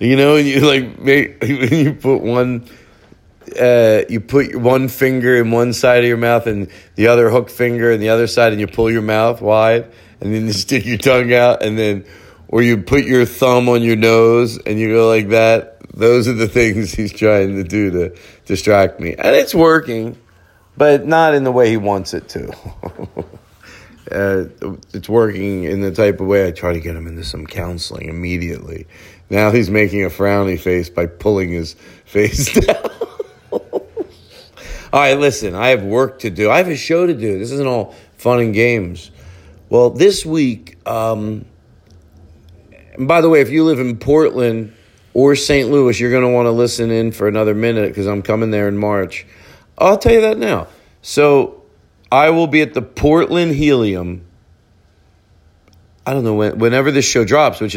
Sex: male